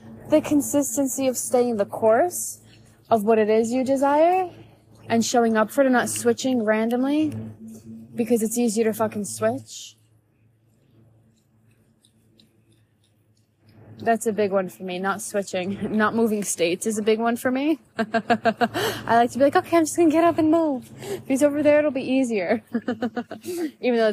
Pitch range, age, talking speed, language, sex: 185-230 Hz, 20-39, 165 wpm, English, female